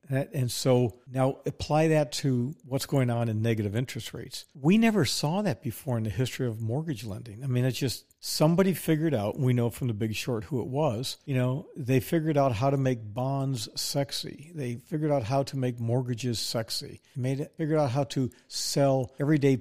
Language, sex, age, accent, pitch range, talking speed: English, male, 50-69, American, 115-140 Hz, 200 wpm